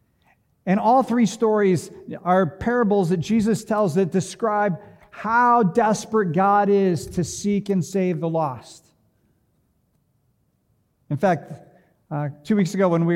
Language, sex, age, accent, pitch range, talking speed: English, male, 50-69, American, 150-195 Hz, 130 wpm